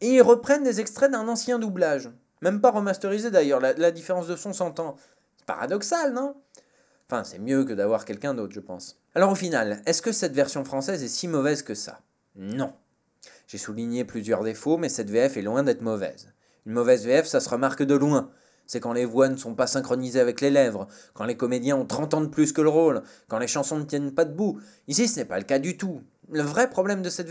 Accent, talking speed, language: French, 230 wpm, French